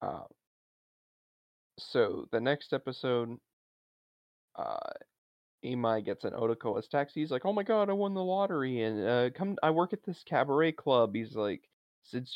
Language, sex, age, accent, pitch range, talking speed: English, male, 20-39, American, 110-135 Hz, 160 wpm